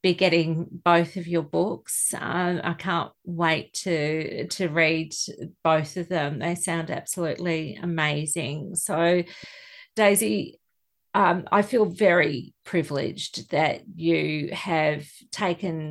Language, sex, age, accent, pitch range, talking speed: English, female, 40-59, Australian, 170-205 Hz, 115 wpm